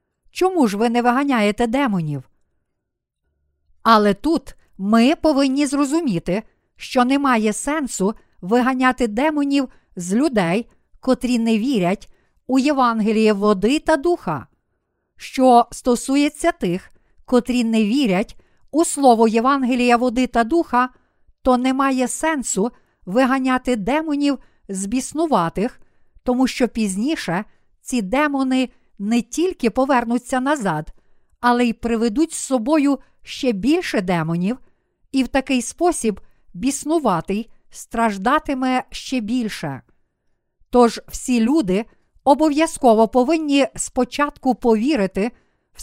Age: 50-69